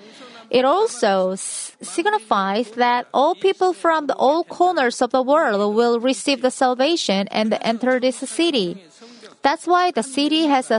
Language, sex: Korean, female